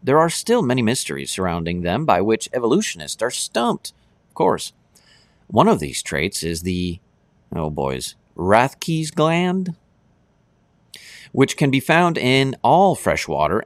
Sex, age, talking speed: male, 50-69, 135 wpm